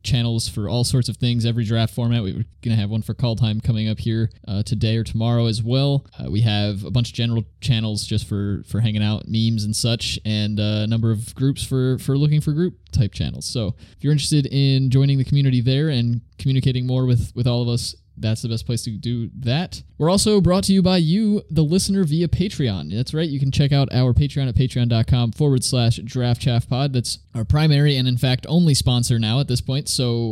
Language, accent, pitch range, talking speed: English, American, 110-135 Hz, 230 wpm